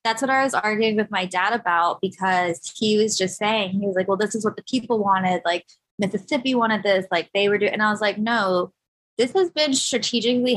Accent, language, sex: American, English, female